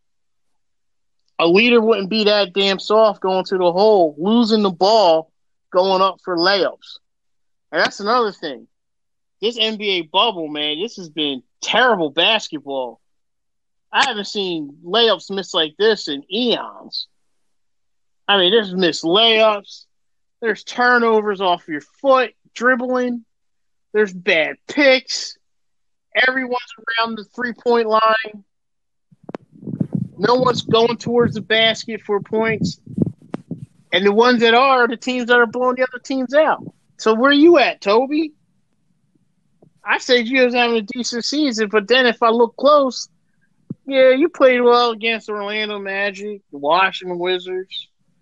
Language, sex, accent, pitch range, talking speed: English, male, American, 180-235 Hz, 140 wpm